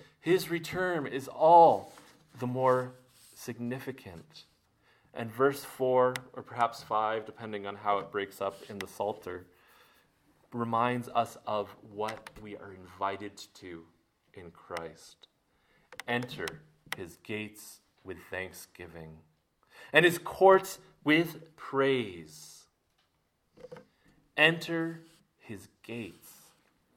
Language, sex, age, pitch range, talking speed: English, male, 30-49, 110-145 Hz, 100 wpm